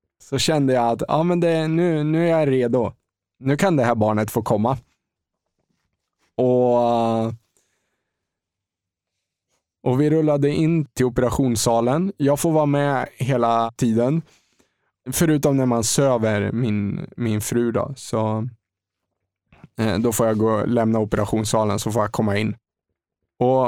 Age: 20-39